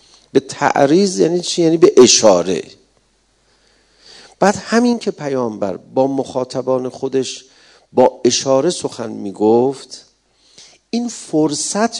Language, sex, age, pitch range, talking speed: Persian, male, 50-69, 135-205 Hz, 100 wpm